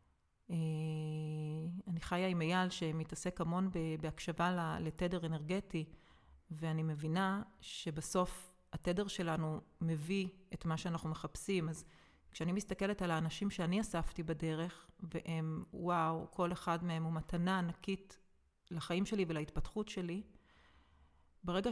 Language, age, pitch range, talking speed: Hebrew, 30-49, 160-200 Hz, 110 wpm